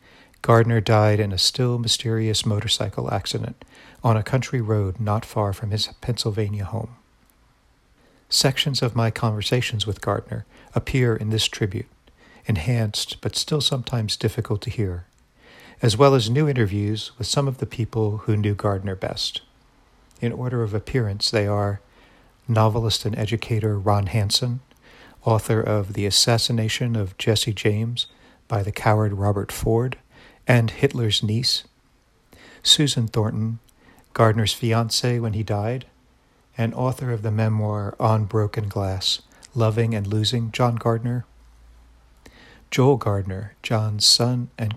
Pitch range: 105-120 Hz